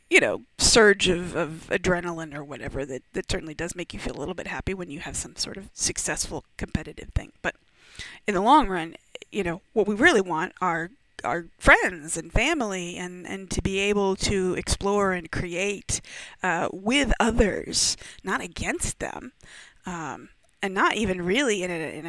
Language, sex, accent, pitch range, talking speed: English, female, American, 180-215 Hz, 180 wpm